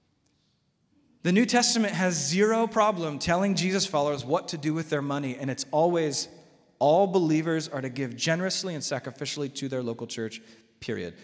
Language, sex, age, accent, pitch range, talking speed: English, male, 30-49, American, 140-195 Hz, 165 wpm